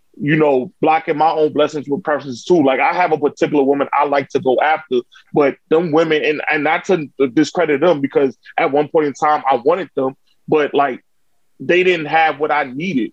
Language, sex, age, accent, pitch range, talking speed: English, male, 20-39, American, 145-170 Hz, 210 wpm